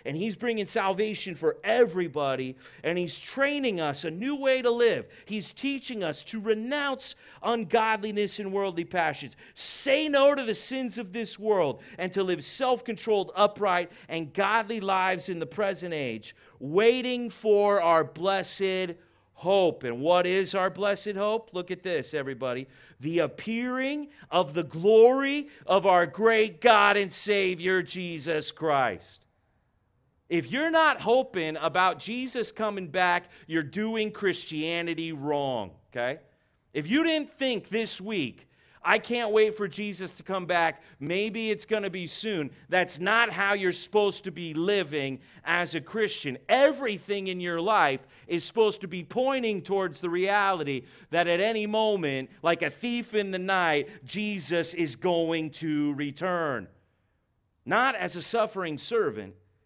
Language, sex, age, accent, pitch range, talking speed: English, male, 40-59, American, 165-220 Hz, 150 wpm